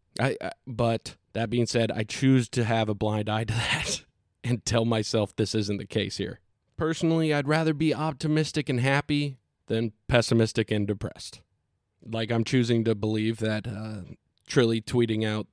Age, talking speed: 20-39, 165 wpm